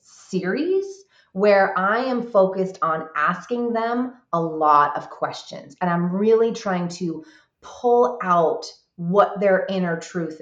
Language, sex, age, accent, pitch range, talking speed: English, female, 30-49, American, 165-225 Hz, 130 wpm